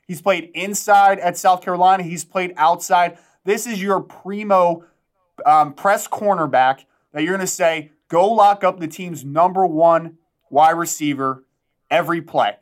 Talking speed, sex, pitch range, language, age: 150 wpm, male, 165-200 Hz, English, 20-39